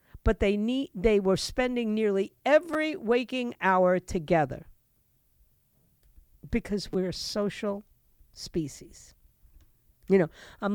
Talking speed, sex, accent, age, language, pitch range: 105 wpm, female, American, 50-69, English, 190-260 Hz